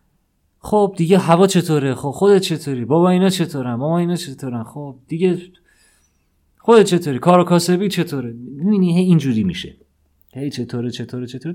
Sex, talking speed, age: male, 130 wpm, 30-49